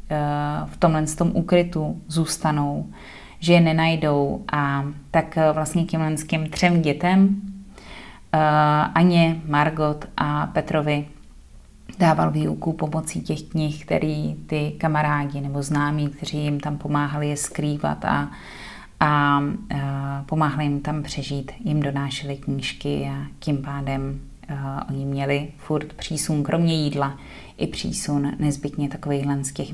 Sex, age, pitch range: female, 30-49, 145-180 Hz